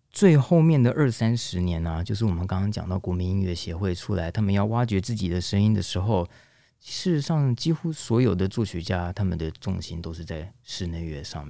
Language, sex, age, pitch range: Chinese, male, 30-49, 85-120 Hz